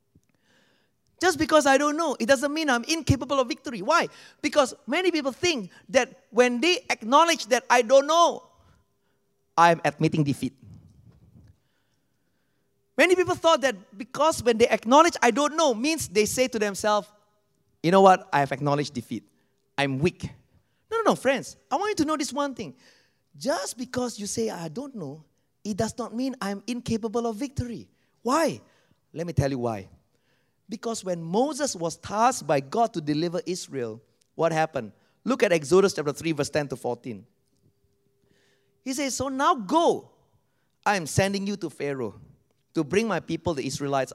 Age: 30-49